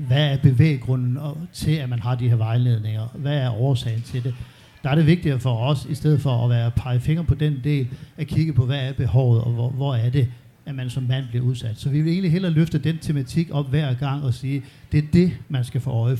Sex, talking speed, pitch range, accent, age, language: male, 255 wpm, 125-150 Hz, native, 50-69, Danish